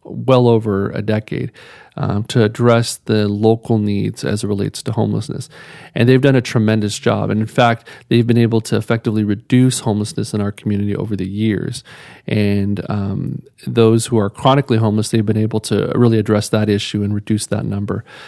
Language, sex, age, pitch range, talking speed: English, male, 40-59, 105-120 Hz, 185 wpm